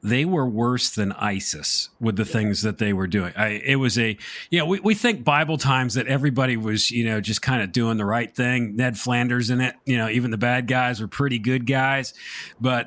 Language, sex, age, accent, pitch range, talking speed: English, male, 40-59, American, 110-150 Hz, 230 wpm